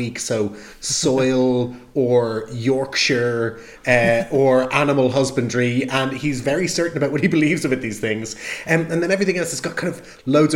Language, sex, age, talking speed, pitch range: English, male, 30-49, 165 wpm, 135-165 Hz